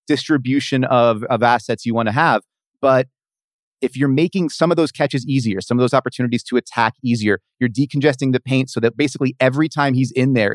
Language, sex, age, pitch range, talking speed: English, male, 30-49, 120-150 Hz, 205 wpm